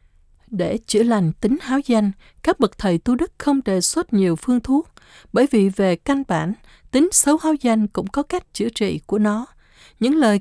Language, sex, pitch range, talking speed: Vietnamese, female, 185-255 Hz, 200 wpm